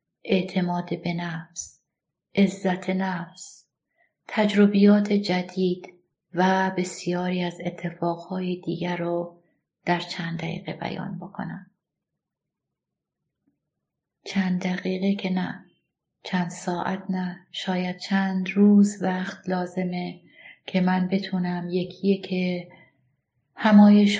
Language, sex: Persian, female